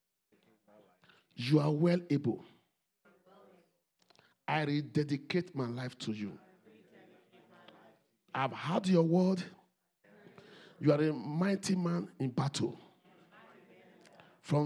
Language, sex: English, male